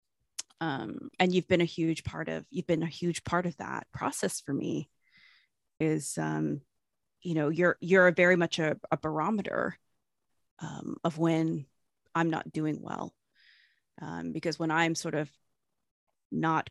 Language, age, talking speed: English, 30-49, 160 wpm